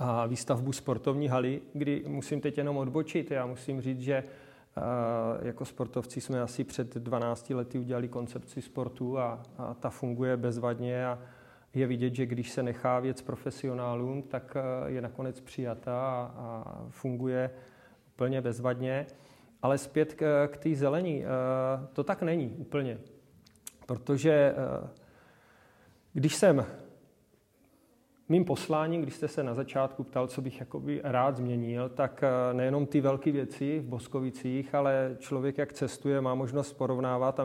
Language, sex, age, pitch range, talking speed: Czech, male, 30-49, 125-140 Hz, 130 wpm